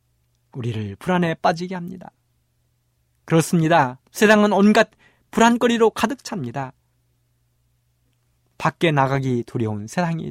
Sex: male